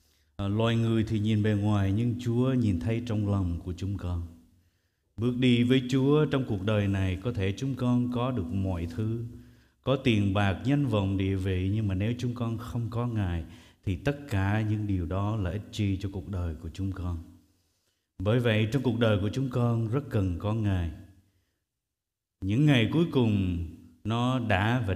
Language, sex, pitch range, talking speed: Vietnamese, male, 95-125 Hz, 190 wpm